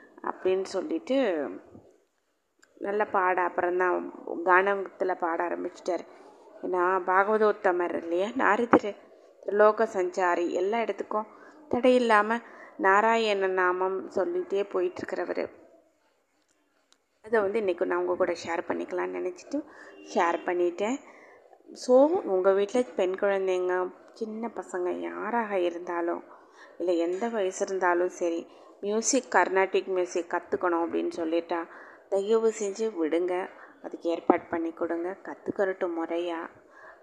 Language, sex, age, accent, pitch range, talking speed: Tamil, female, 20-39, native, 180-220 Hz, 100 wpm